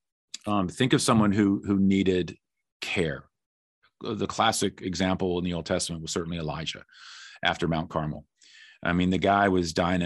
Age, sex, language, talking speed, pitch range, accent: 40-59, male, English, 160 wpm, 85-95 Hz, American